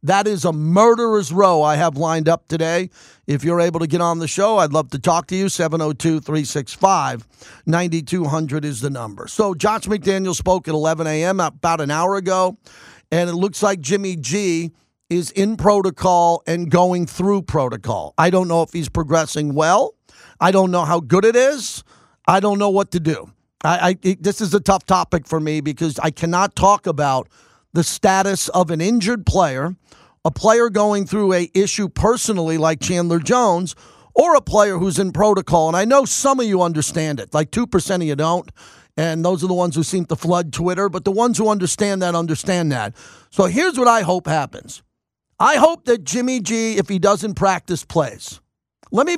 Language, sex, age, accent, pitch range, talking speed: English, male, 40-59, American, 165-205 Hz, 190 wpm